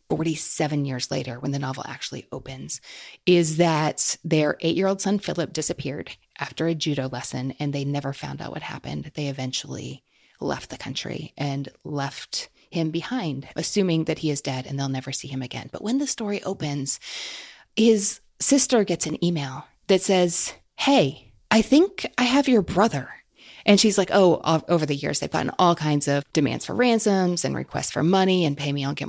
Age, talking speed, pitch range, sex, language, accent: 30-49, 185 wpm, 145-190 Hz, female, English, American